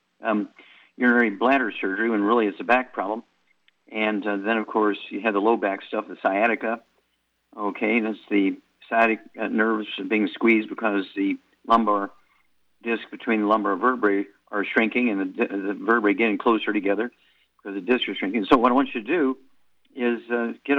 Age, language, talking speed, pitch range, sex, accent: 50-69, English, 180 wpm, 105-125 Hz, male, American